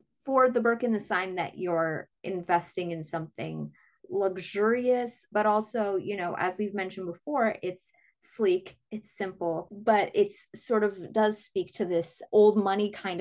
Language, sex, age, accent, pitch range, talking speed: English, female, 30-49, American, 165-210 Hz, 155 wpm